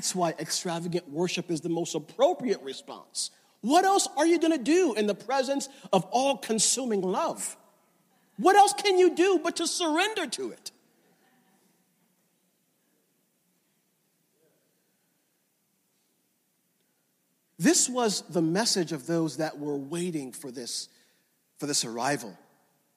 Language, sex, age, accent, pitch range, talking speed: English, male, 50-69, American, 165-240 Hz, 120 wpm